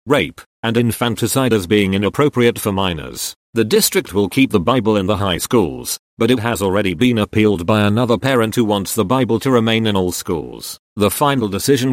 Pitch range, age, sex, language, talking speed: 105-130 Hz, 40-59, male, English, 195 wpm